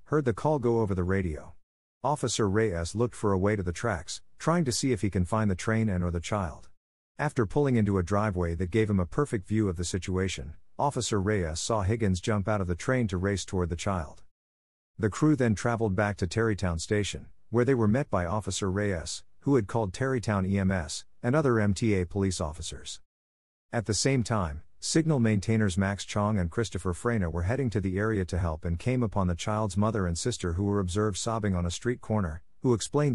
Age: 50-69